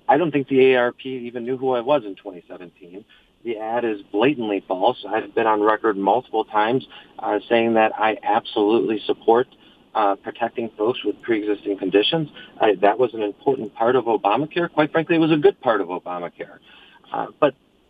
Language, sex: English, male